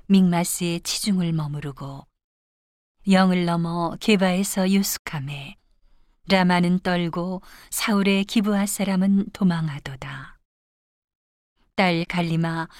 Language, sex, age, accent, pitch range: Korean, female, 40-59, native, 165-200 Hz